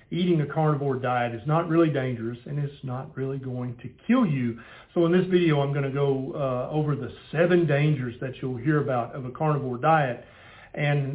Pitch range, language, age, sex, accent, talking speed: 130-160 Hz, English, 50-69, male, American, 200 wpm